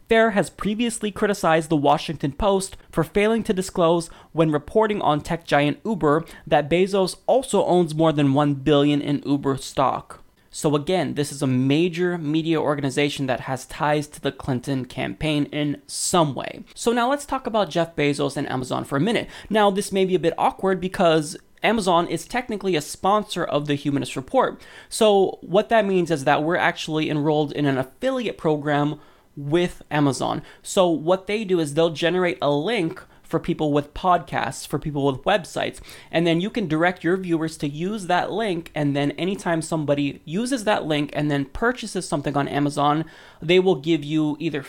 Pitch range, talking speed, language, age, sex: 145-190 Hz, 180 wpm, English, 20-39, male